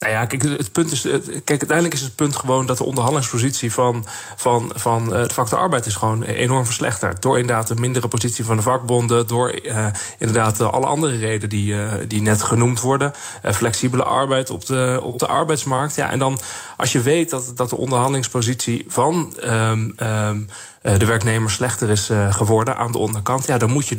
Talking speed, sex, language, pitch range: 200 wpm, male, Dutch, 110-130 Hz